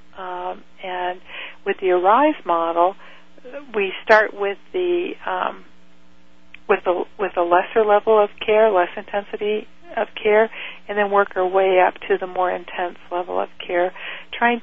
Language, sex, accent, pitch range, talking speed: English, female, American, 175-200 Hz, 150 wpm